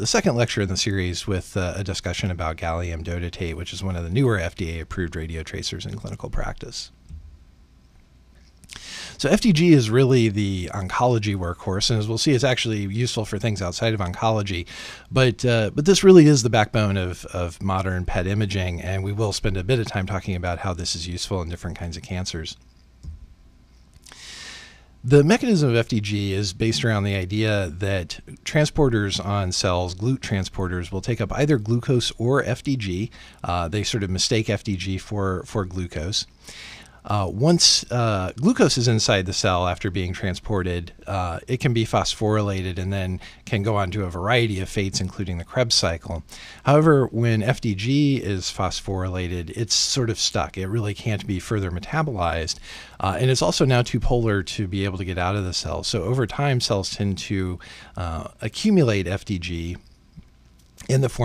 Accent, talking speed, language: American, 175 wpm, English